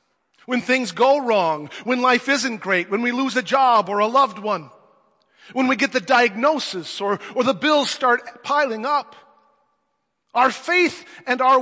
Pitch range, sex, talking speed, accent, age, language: 195-290 Hz, male, 170 wpm, American, 40-59, English